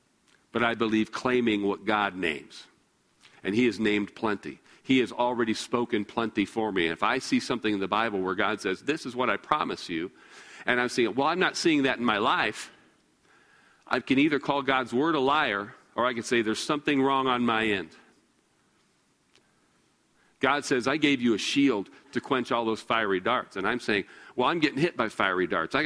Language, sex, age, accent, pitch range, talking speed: English, male, 50-69, American, 105-130 Hz, 205 wpm